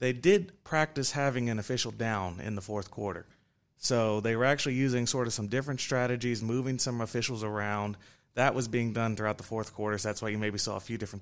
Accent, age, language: American, 30-49, English